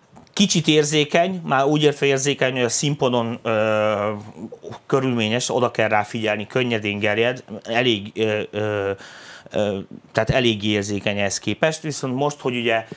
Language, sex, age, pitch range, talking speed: Hungarian, male, 30-49, 110-135 Hz, 140 wpm